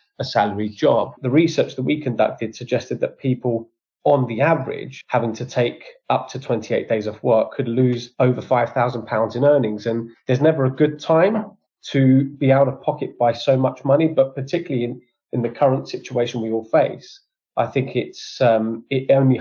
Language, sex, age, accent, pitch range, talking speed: English, male, 20-39, British, 115-140 Hz, 185 wpm